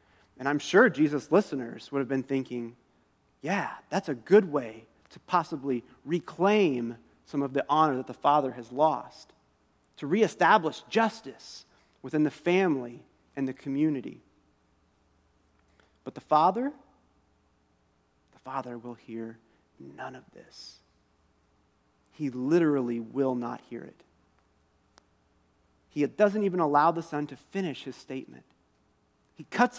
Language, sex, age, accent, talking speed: English, male, 30-49, American, 125 wpm